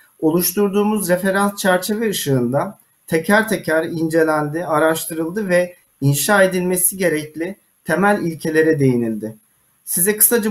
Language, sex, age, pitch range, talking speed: Turkish, male, 40-59, 160-205 Hz, 95 wpm